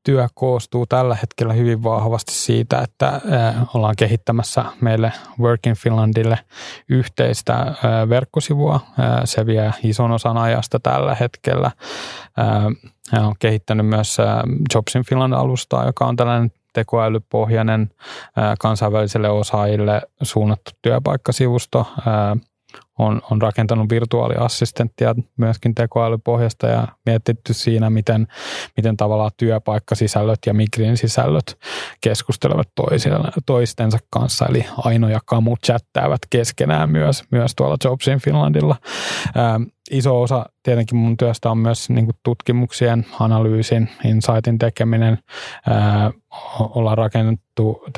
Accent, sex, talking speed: native, male, 100 wpm